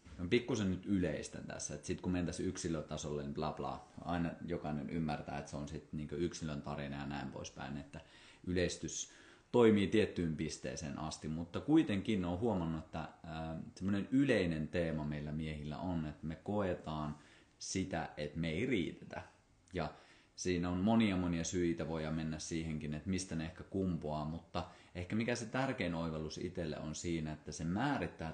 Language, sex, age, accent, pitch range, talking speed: Finnish, male, 30-49, native, 75-90 Hz, 165 wpm